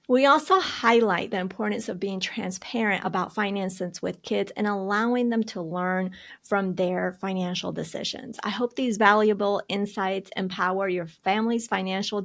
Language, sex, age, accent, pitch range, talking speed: English, female, 30-49, American, 185-230 Hz, 145 wpm